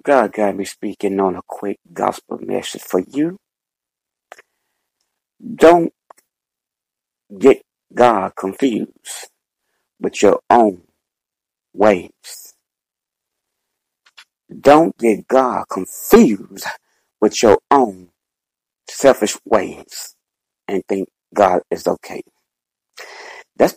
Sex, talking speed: male, 85 wpm